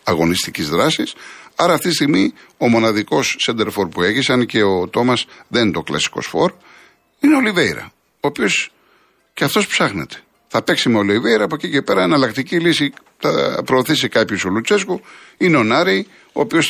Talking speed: 180 wpm